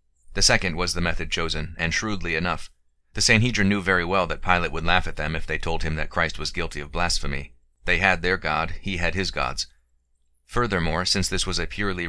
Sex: male